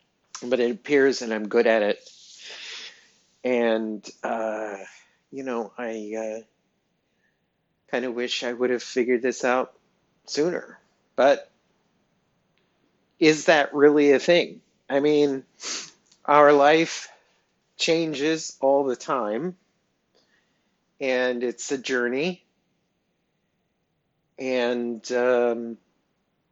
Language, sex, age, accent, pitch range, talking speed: English, male, 50-69, American, 115-160 Hz, 95 wpm